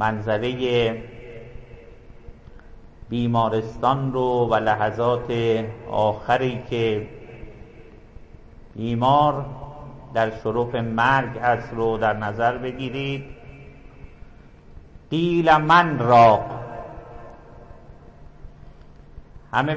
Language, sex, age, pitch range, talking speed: English, male, 50-69, 110-135 Hz, 60 wpm